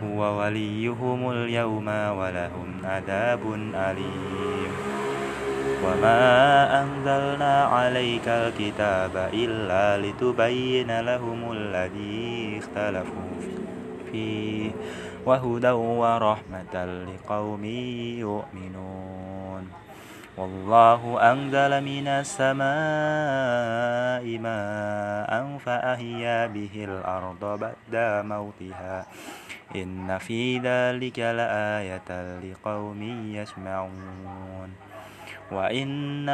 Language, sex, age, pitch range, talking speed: Indonesian, male, 20-39, 95-125 Hz, 60 wpm